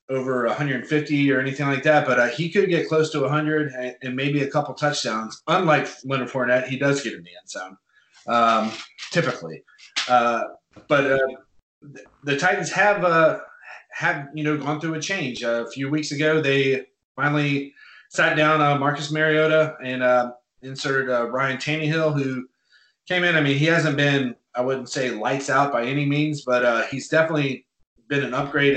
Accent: American